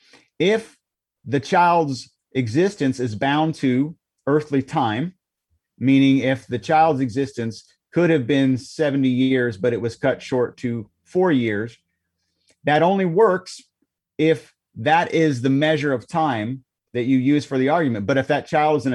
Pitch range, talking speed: 120-150 Hz, 155 wpm